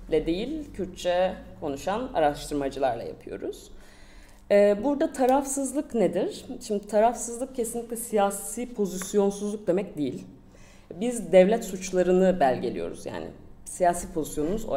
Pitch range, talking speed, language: 160-210 Hz, 95 wpm, Turkish